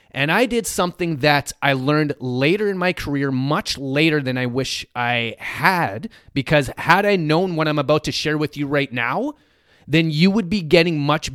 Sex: male